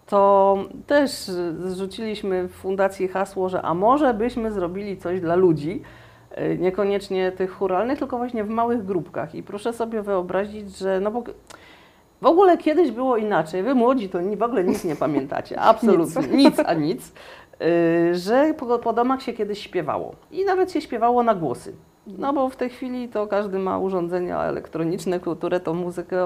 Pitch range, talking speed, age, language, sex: 180-240 Hz, 160 wpm, 40-59, Polish, female